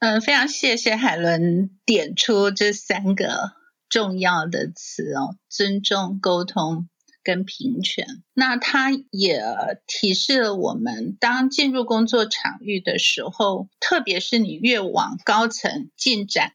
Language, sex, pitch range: Chinese, female, 180-245 Hz